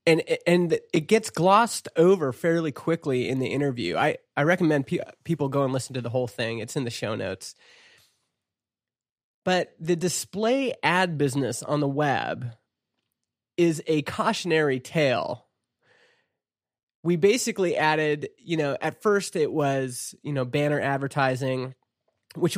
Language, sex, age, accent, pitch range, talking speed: English, male, 20-39, American, 130-170 Hz, 145 wpm